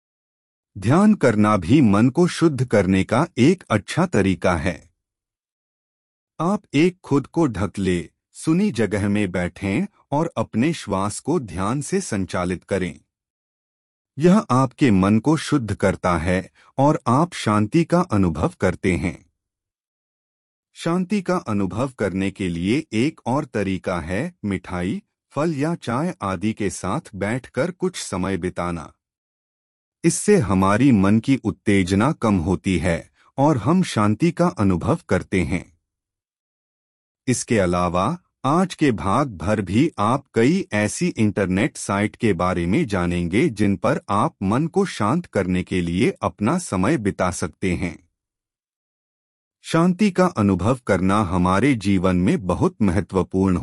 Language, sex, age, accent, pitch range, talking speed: Hindi, male, 30-49, native, 95-140 Hz, 135 wpm